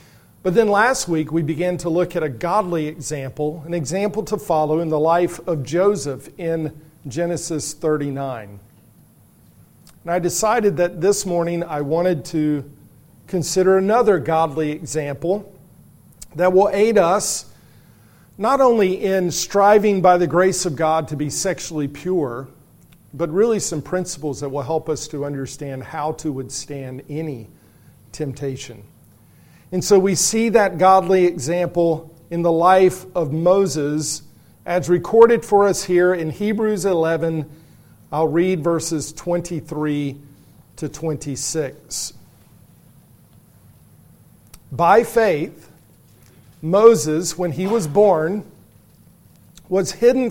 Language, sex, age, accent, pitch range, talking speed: English, male, 50-69, American, 150-185 Hz, 125 wpm